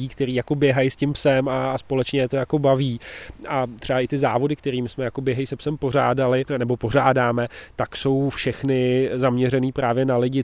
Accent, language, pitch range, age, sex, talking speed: native, Czech, 120-130 Hz, 20-39, male, 195 wpm